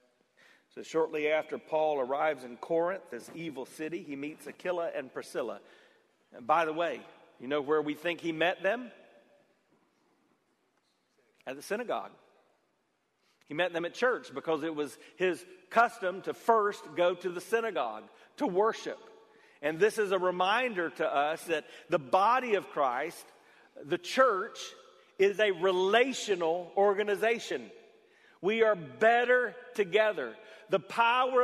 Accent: American